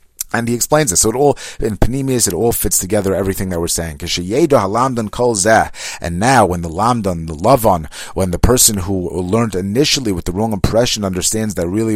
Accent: American